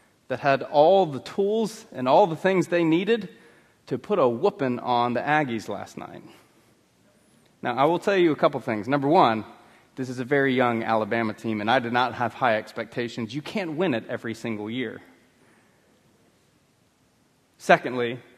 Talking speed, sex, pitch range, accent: 170 wpm, male, 120-175 Hz, American